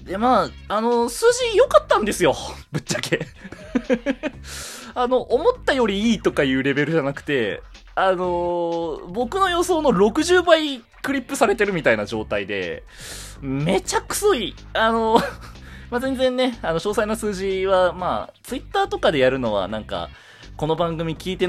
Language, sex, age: Japanese, male, 20-39